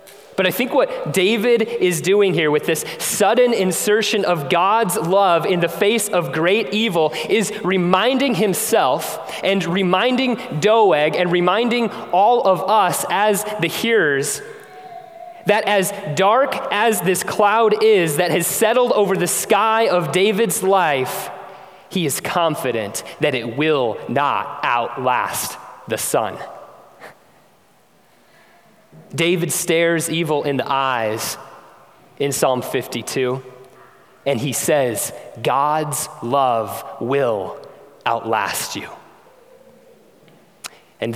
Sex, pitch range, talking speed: male, 150-215 Hz, 115 wpm